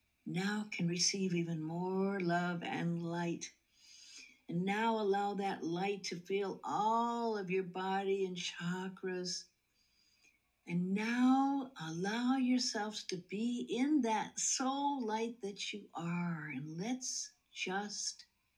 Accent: American